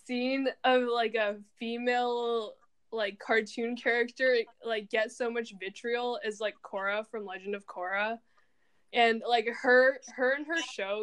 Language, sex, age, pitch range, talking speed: English, female, 10-29, 210-245 Hz, 145 wpm